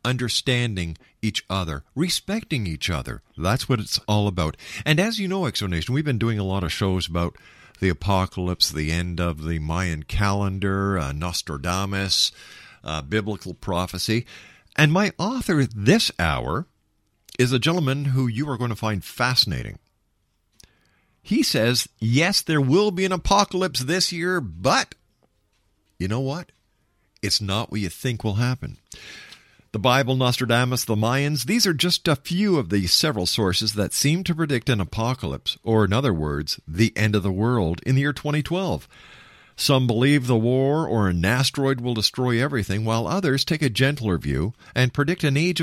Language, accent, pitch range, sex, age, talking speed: English, American, 95-140 Hz, male, 50-69, 165 wpm